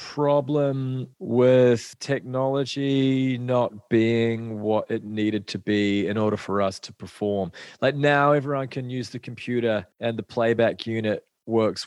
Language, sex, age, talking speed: English, male, 30-49, 140 wpm